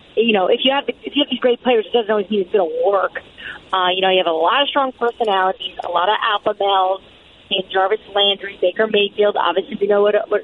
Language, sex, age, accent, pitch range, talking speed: English, female, 30-49, American, 200-260 Hz, 245 wpm